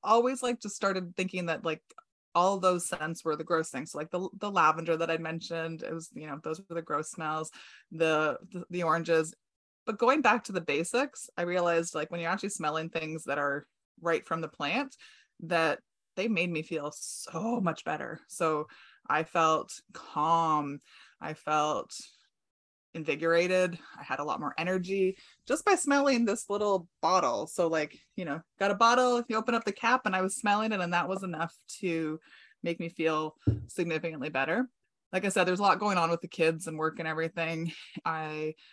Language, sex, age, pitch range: English, female, 20-39, 155-190 Hz